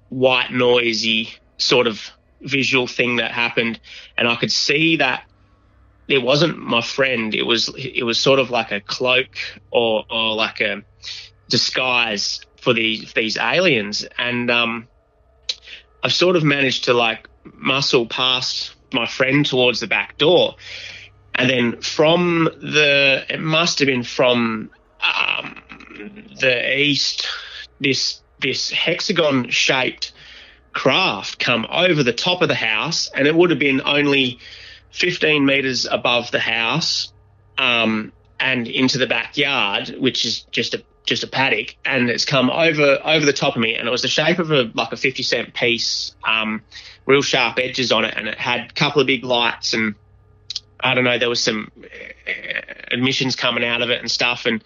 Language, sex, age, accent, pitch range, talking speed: English, male, 30-49, Australian, 110-135 Hz, 165 wpm